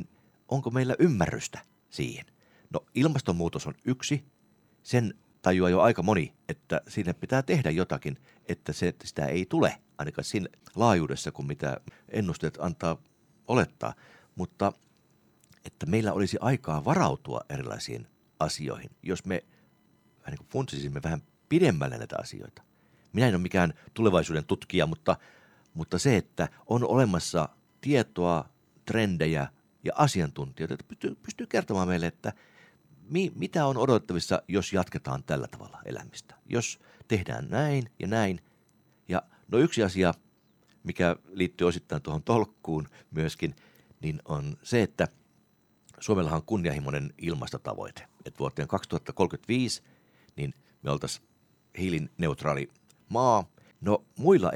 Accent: native